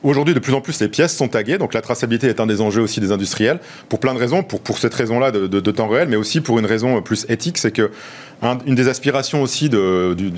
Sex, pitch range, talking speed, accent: male, 105-130 Hz, 280 wpm, French